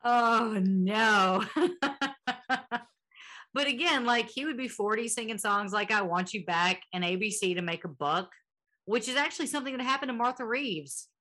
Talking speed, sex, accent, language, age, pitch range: 165 wpm, female, American, English, 40-59, 175-235 Hz